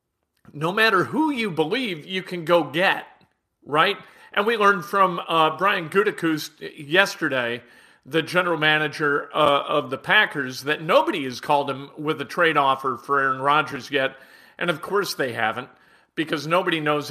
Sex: male